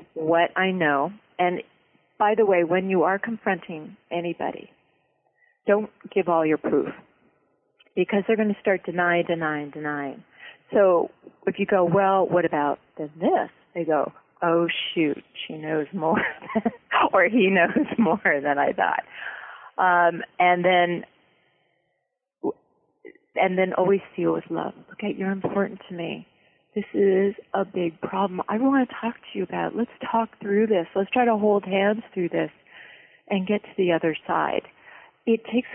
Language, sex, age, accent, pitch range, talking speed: English, female, 40-59, American, 170-205 Hz, 155 wpm